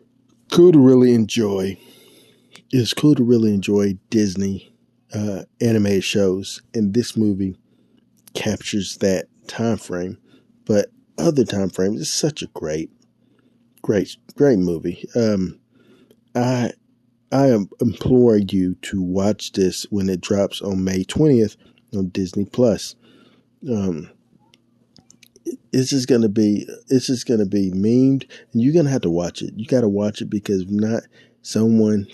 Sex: male